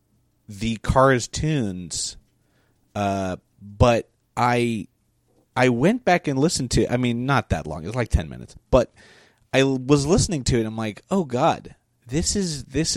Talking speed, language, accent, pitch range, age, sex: 170 wpm, English, American, 110-140 Hz, 30-49, male